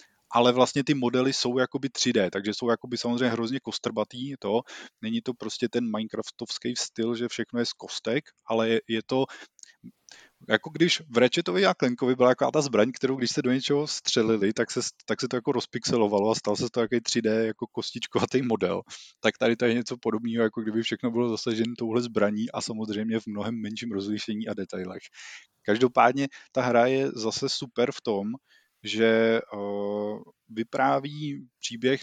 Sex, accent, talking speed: male, native, 175 wpm